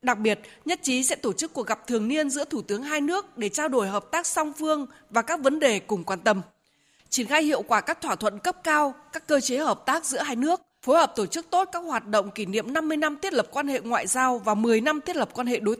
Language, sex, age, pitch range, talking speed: Vietnamese, female, 20-39, 220-295 Hz, 275 wpm